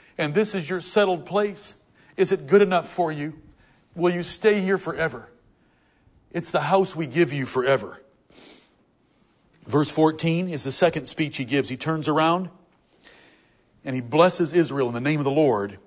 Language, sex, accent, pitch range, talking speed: English, male, American, 145-190 Hz, 170 wpm